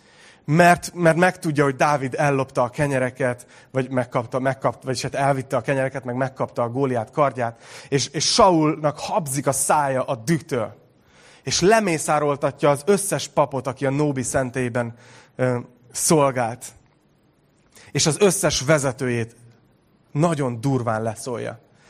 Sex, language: male, Hungarian